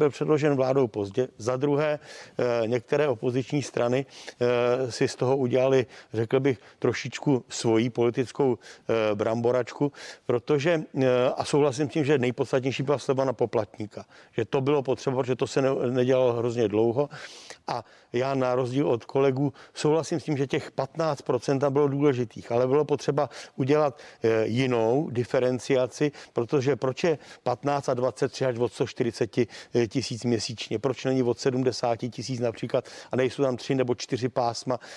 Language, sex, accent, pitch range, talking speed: Czech, male, native, 120-140 Hz, 145 wpm